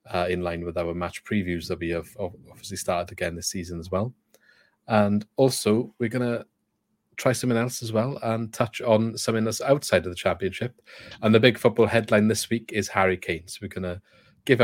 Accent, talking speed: British, 210 wpm